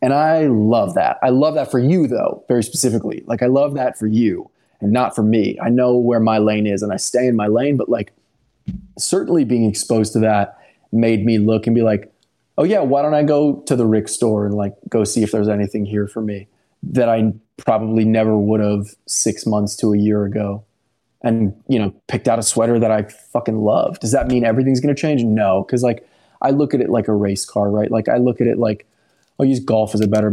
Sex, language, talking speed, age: male, English, 240 wpm, 20-39